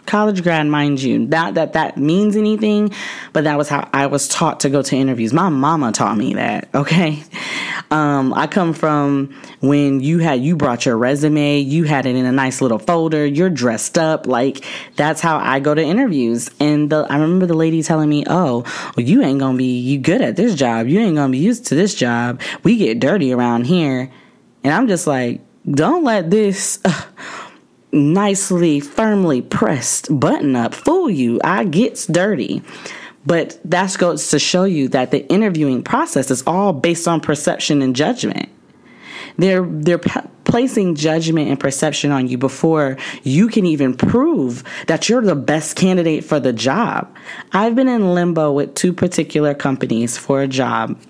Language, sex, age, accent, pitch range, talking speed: English, female, 20-39, American, 135-180 Hz, 185 wpm